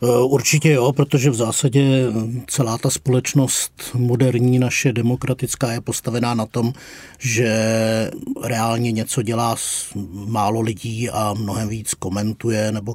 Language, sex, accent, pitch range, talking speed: Czech, male, native, 95-110 Hz, 120 wpm